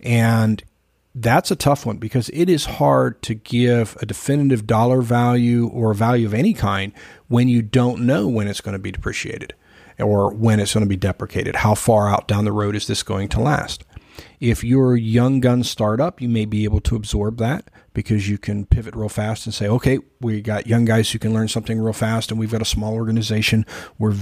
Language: English